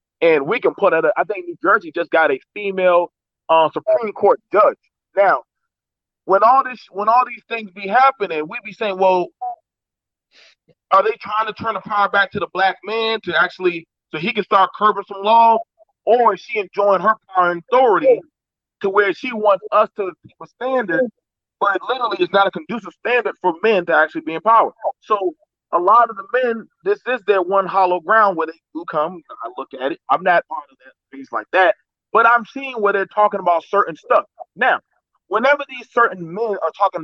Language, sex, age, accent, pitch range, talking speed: English, male, 30-49, American, 185-235 Hz, 200 wpm